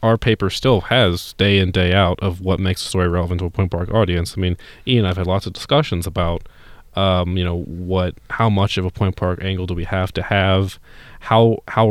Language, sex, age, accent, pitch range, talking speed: English, male, 20-39, American, 95-120 Hz, 230 wpm